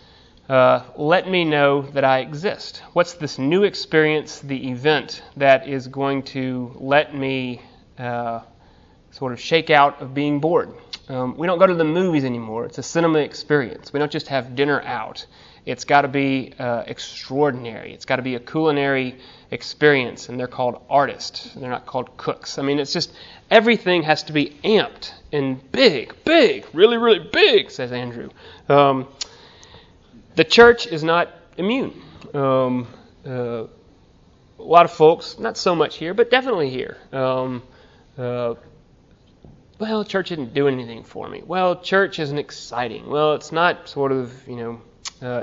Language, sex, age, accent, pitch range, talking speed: English, male, 30-49, American, 130-160 Hz, 160 wpm